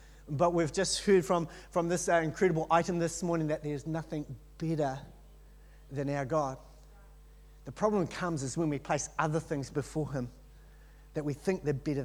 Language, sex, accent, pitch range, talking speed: English, male, Australian, 160-225 Hz, 170 wpm